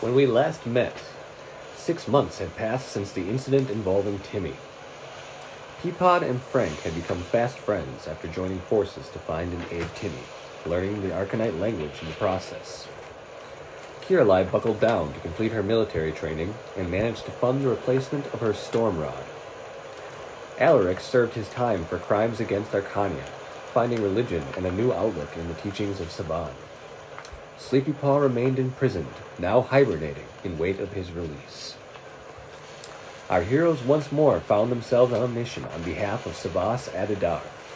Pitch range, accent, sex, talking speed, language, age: 95-135 Hz, American, male, 150 wpm, English, 30-49